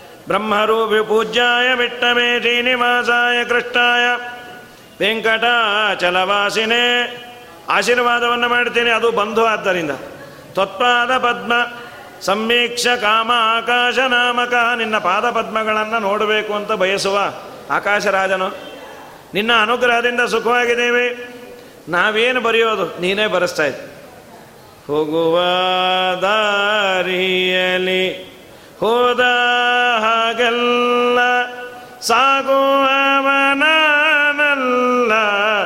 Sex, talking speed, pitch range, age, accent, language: male, 60 wpm, 205-245 Hz, 40-59, native, Kannada